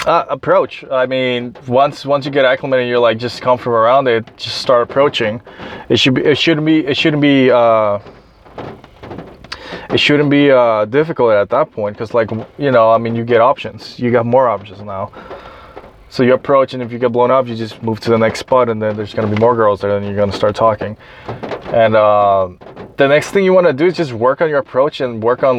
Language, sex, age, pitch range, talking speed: English, male, 20-39, 115-150 Hz, 230 wpm